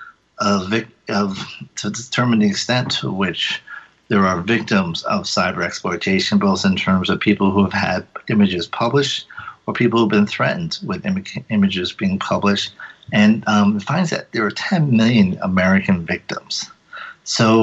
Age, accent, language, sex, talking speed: 50-69, American, English, male, 160 wpm